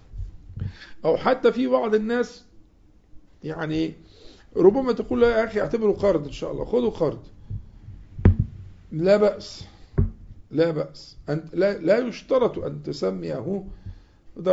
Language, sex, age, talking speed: Arabic, male, 50-69, 115 wpm